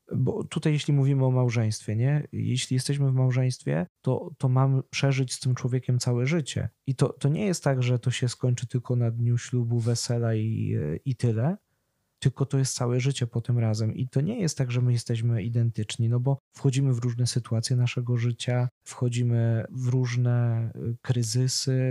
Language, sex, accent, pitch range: Polish, male, native, 120-135 Hz